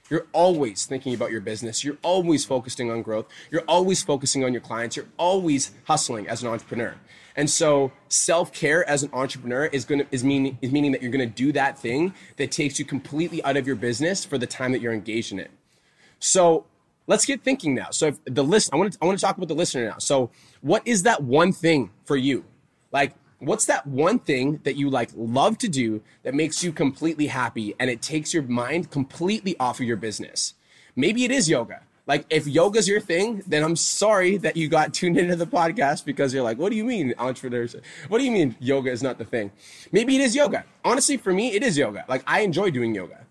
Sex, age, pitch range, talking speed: male, 20-39, 125-170 Hz, 225 wpm